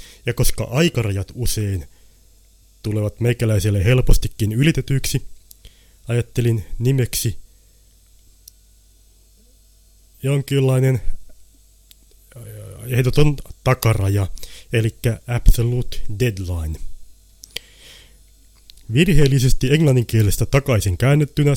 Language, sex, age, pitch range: Finnish, male, 30-49, 90-125 Hz